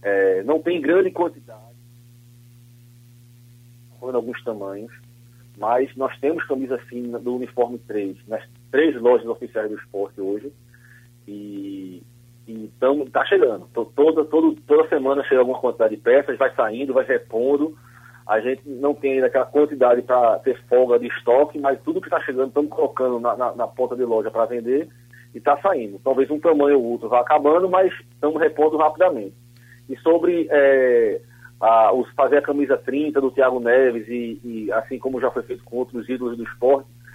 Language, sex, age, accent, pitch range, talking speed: Portuguese, male, 40-59, Brazilian, 120-140 Hz, 165 wpm